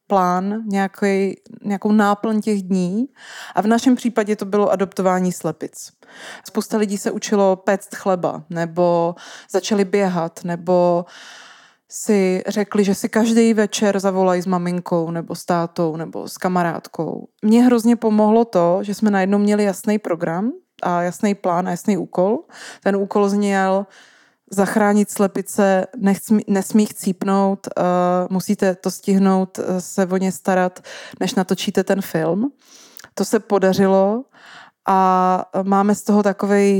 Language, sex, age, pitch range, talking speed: Czech, female, 20-39, 185-210 Hz, 135 wpm